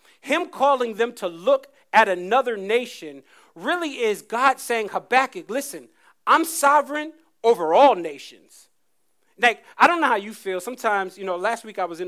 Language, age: English, 40-59